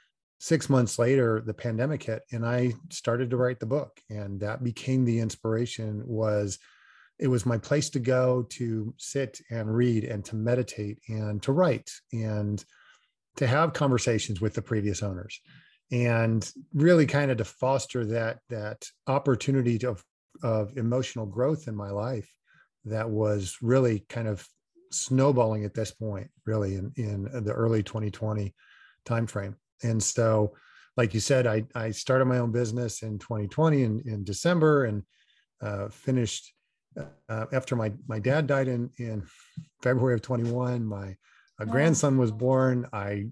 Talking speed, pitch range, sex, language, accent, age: 155 wpm, 110-130 Hz, male, English, American, 40-59